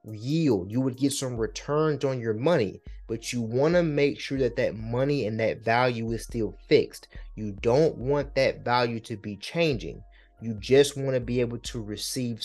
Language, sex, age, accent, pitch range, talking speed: English, male, 30-49, American, 110-135 Hz, 195 wpm